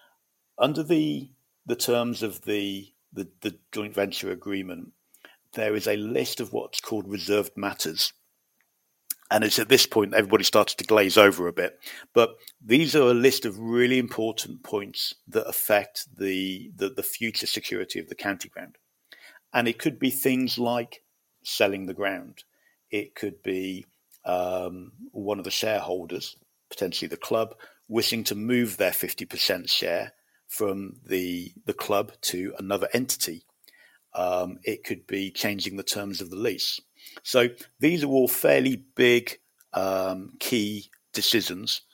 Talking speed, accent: 150 wpm, British